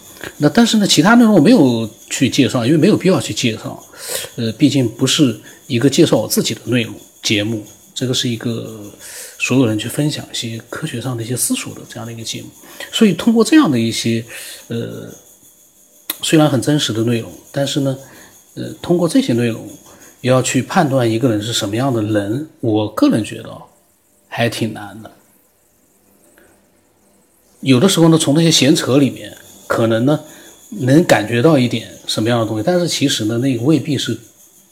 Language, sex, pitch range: Chinese, male, 115-155 Hz